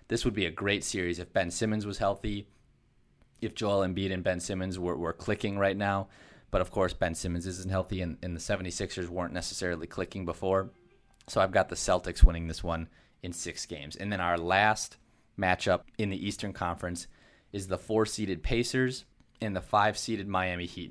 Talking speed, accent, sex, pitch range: 190 wpm, American, male, 90-105 Hz